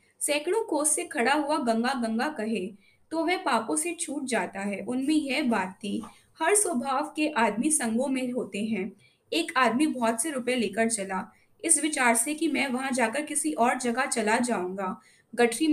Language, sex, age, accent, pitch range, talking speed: Hindi, female, 20-39, native, 225-295 Hz, 85 wpm